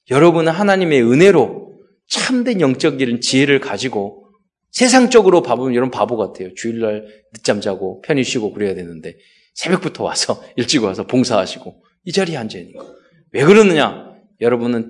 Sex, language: male, Korean